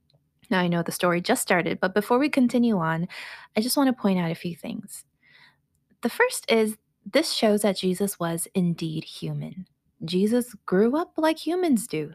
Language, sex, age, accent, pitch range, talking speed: English, female, 20-39, American, 180-240 Hz, 185 wpm